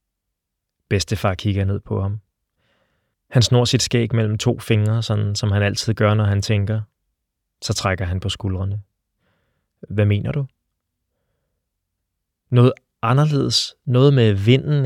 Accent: native